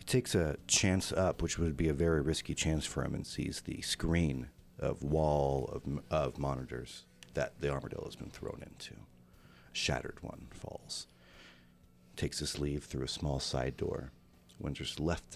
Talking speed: 170 wpm